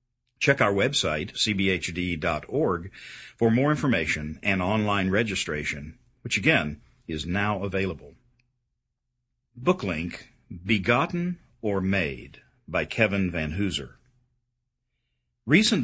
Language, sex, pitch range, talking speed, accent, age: English, male, 90-120 Hz, 90 wpm, American, 50-69